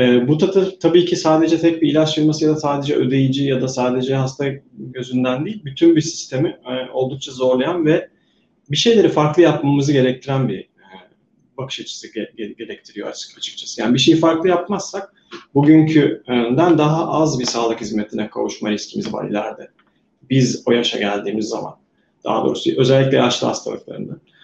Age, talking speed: 30-49, 150 wpm